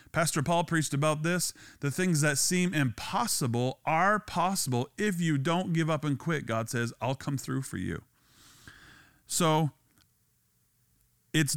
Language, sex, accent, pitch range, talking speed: English, male, American, 125-160 Hz, 145 wpm